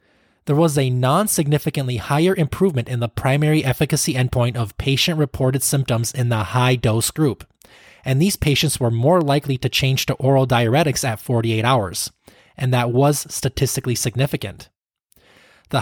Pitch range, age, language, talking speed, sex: 120-150 Hz, 20-39, English, 145 wpm, male